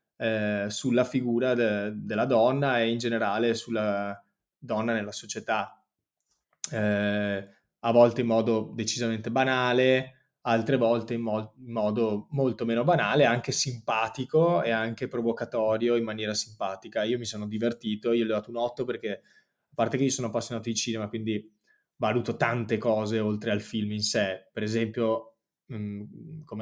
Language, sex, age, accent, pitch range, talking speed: Italian, male, 20-39, native, 110-135 Hz, 155 wpm